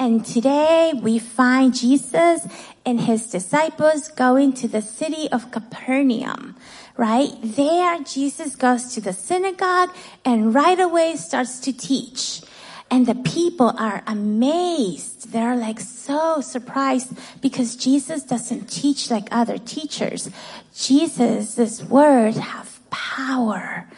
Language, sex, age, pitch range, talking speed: English, female, 30-49, 230-280 Hz, 120 wpm